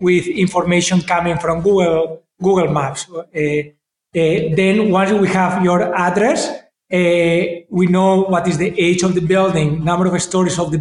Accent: Spanish